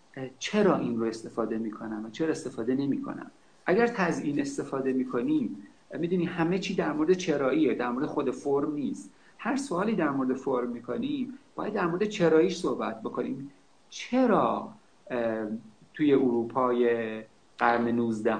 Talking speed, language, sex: 135 wpm, Persian, male